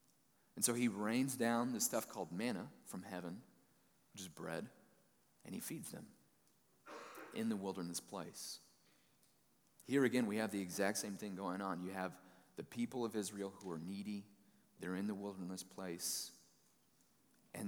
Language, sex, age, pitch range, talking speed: English, male, 40-59, 95-120 Hz, 160 wpm